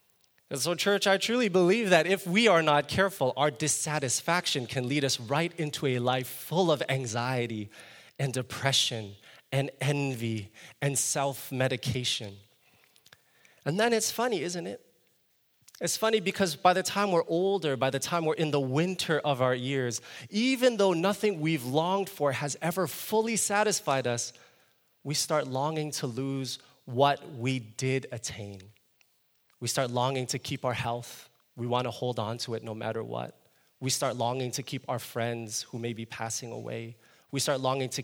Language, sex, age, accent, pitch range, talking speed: English, male, 20-39, American, 125-165 Hz, 170 wpm